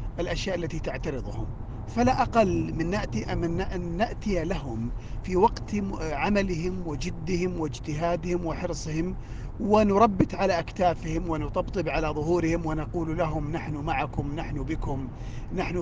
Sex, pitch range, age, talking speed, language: male, 130-175 Hz, 40-59, 110 wpm, Arabic